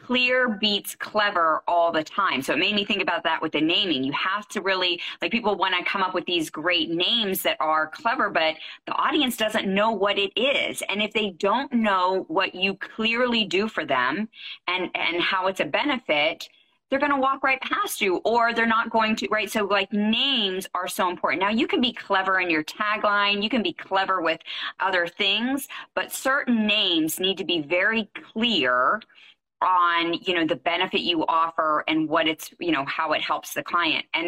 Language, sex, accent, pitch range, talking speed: English, female, American, 175-235 Hz, 205 wpm